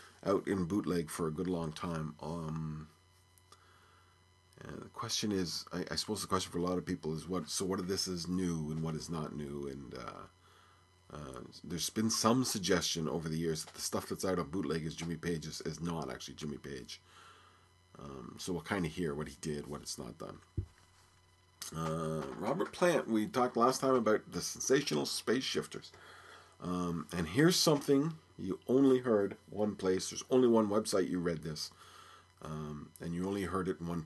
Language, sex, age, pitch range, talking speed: English, male, 40-59, 85-105 Hz, 195 wpm